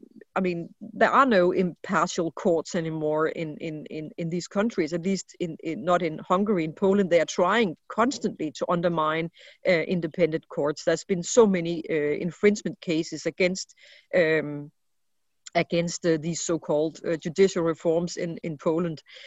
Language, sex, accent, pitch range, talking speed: English, female, Danish, 170-215 Hz, 160 wpm